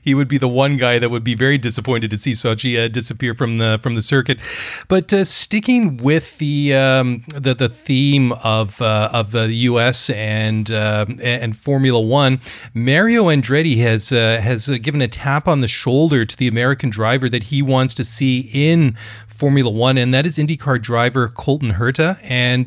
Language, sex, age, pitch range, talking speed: English, male, 30-49, 115-140 Hz, 190 wpm